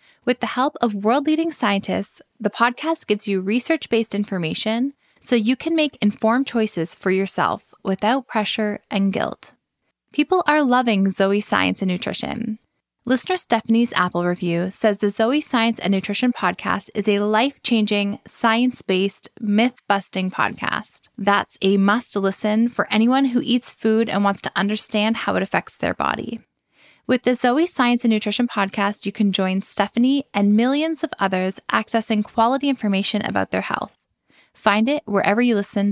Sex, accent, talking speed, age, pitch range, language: female, American, 150 wpm, 10-29, 195-240 Hz, English